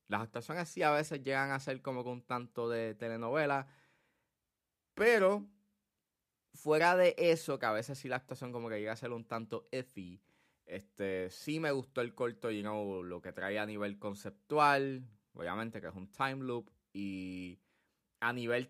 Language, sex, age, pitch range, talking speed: Spanish, male, 20-39, 105-140 Hz, 185 wpm